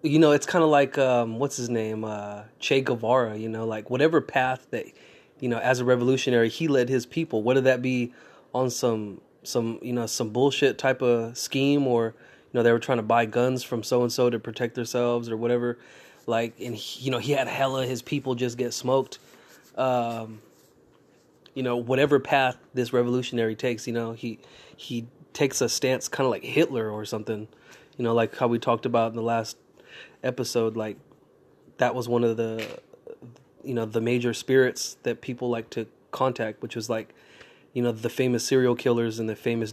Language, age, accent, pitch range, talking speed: English, 20-39, American, 115-130 Hz, 195 wpm